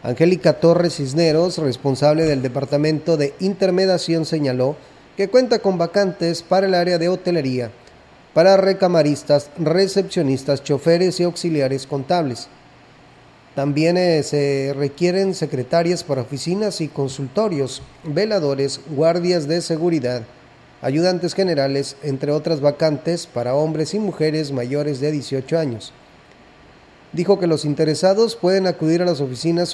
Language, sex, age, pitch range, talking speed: Spanish, male, 30-49, 140-180 Hz, 120 wpm